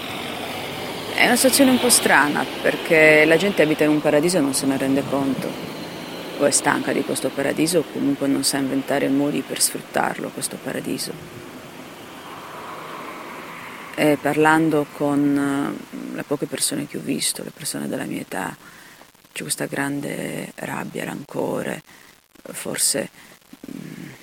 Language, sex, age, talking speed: English, female, 40-59, 135 wpm